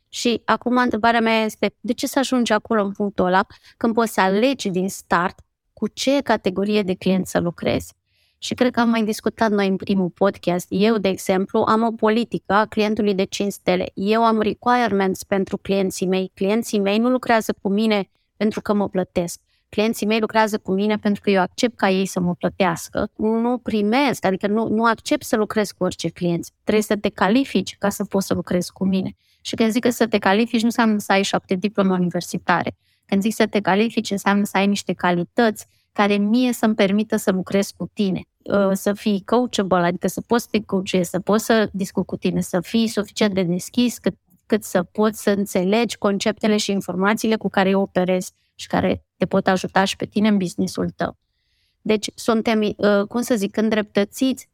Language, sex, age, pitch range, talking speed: Romanian, female, 20-39, 190-220 Hz, 200 wpm